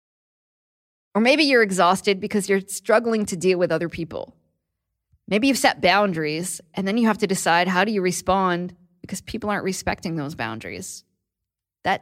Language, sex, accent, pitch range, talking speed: English, female, American, 165-215 Hz, 165 wpm